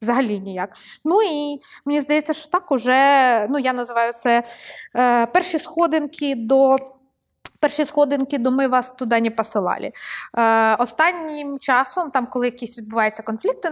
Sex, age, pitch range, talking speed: female, 20-39, 235-320 Hz, 140 wpm